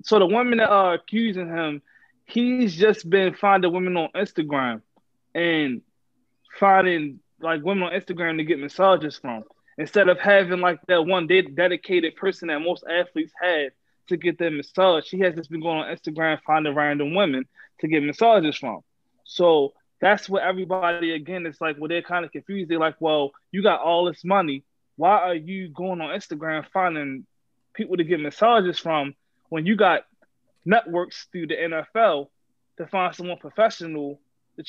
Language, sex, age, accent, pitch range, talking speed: English, male, 20-39, American, 155-185 Hz, 170 wpm